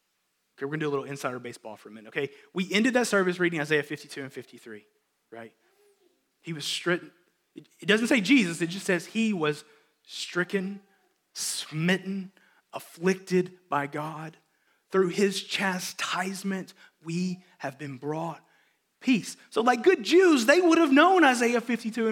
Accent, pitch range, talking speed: American, 170-270 Hz, 155 wpm